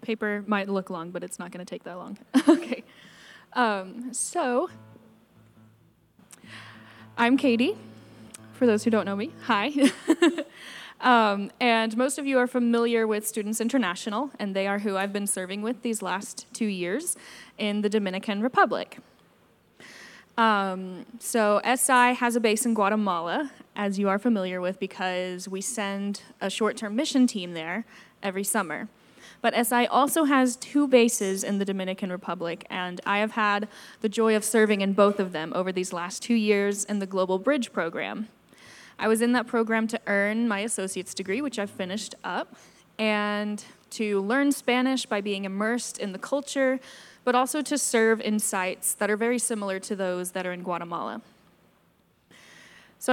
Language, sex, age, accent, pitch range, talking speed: English, female, 10-29, American, 190-240 Hz, 165 wpm